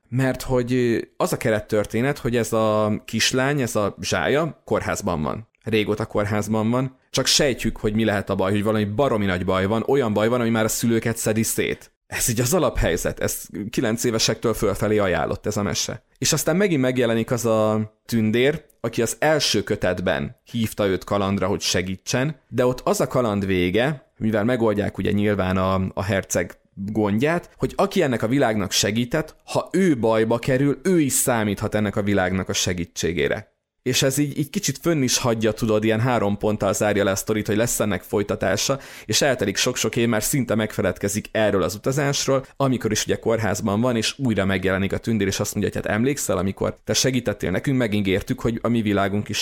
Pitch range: 100-125 Hz